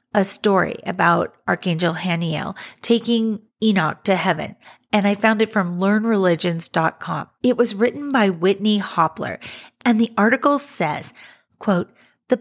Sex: female